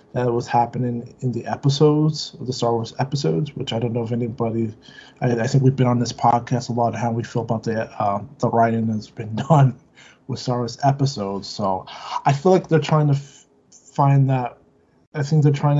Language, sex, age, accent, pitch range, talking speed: English, male, 20-39, American, 120-145 Hz, 215 wpm